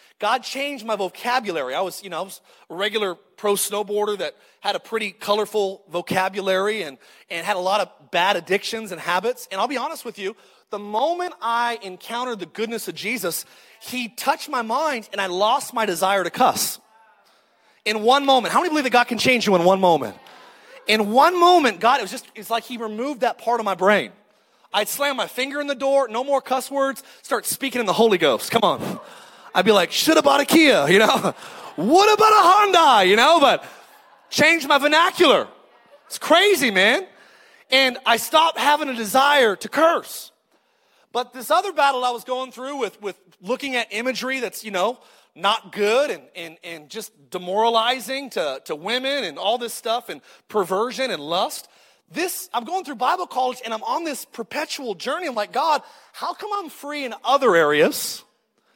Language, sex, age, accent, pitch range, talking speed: English, male, 30-49, American, 210-285 Hz, 195 wpm